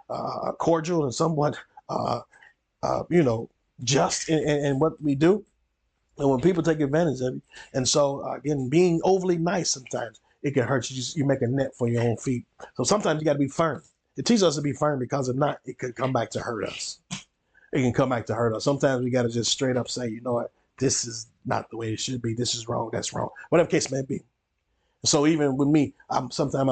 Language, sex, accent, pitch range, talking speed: English, male, American, 115-145 Hz, 240 wpm